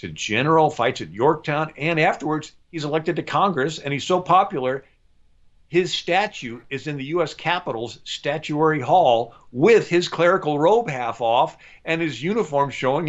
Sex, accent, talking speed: male, American, 155 wpm